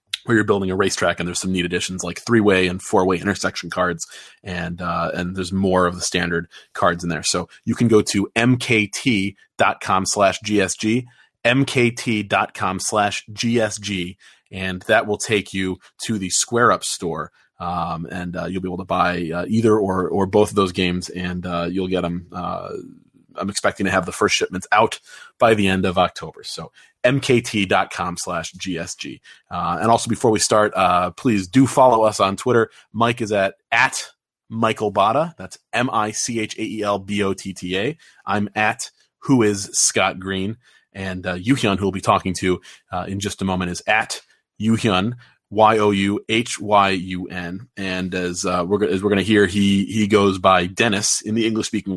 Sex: male